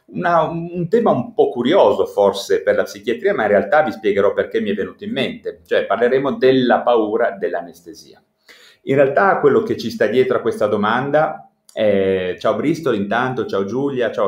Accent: native